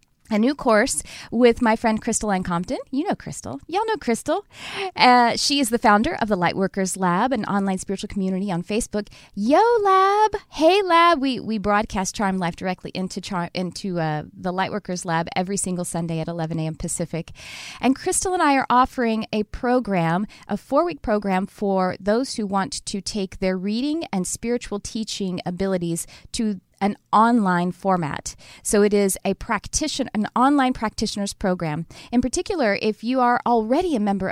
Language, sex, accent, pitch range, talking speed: English, female, American, 185-240 Hz, 170 wpm